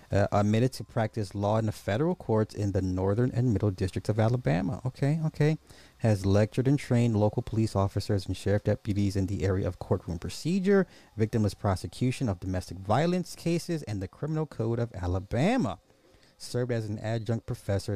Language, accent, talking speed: English, American, 175 wpm